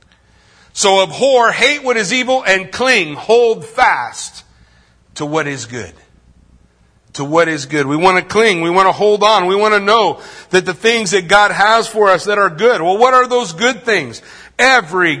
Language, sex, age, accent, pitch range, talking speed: English, male, 50-69, American, 150-215 Hz, 195 wpm